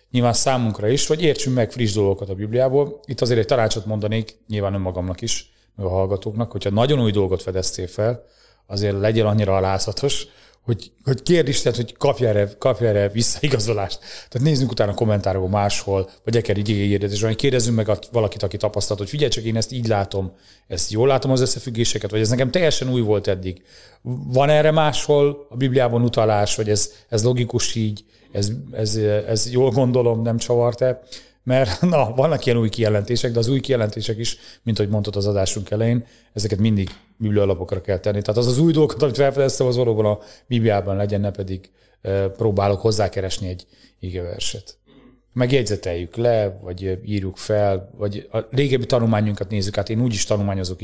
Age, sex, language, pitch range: 30-49, male, Hungarian, 100-125 Hz